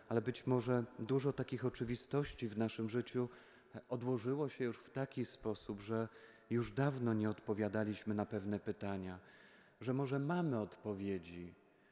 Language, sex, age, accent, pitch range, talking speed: Polish, male, 40-59, native, 105-125 Hz, 135 wpm